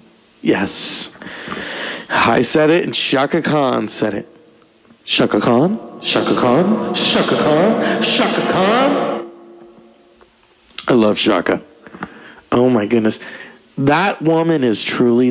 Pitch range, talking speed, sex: 110-125 Hz, 105 wpm, male